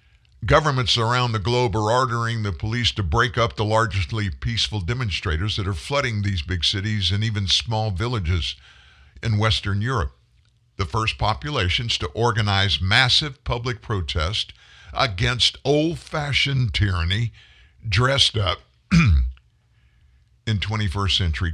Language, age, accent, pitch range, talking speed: English, 50-69, American, 80-115 Hz, 125 wpm